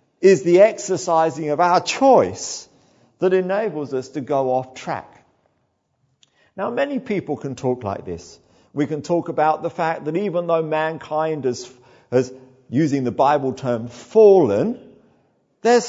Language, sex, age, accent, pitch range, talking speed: English, male, 50-69, British, 140-225 Hz, 145 wpm